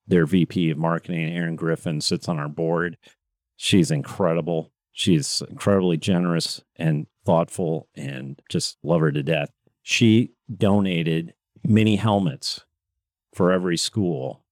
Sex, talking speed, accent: male, 125 wpm, American